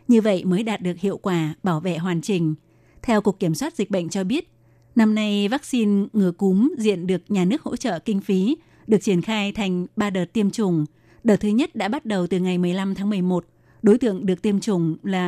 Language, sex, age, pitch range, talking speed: Vietnamese, female, 20-39, 185-215 Hz, 225 wpm